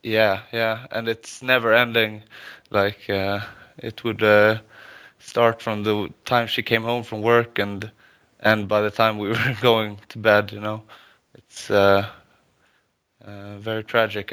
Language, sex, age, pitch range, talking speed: English, male, 20-39, 105-115 Hz, 155 wpm